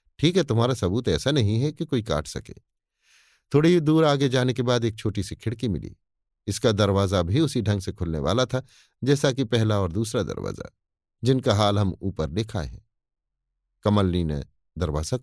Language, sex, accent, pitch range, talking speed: Hindi, male, native, 95-125 Hz, 180 wpm